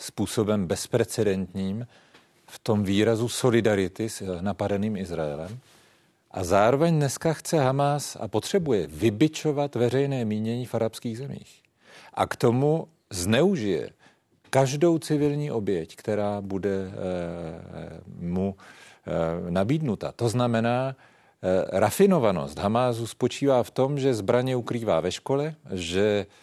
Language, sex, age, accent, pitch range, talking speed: Czech, male, 40-59, native, 100-135 Hz, 105 wpm